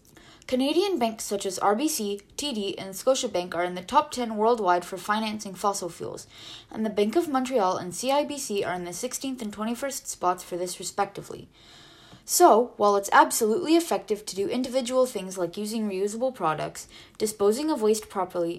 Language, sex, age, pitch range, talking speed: English, female, 20-39, 190-255 Hz, 170 wpm